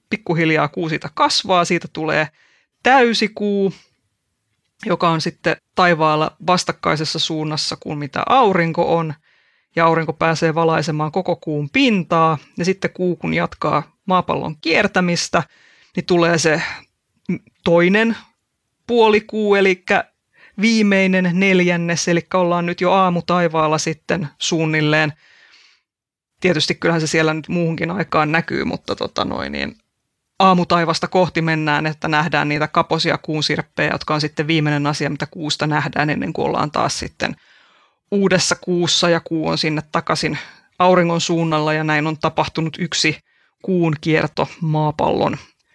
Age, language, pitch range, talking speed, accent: 30-49, Finnish, 155-180 Hz, 125 wpm, native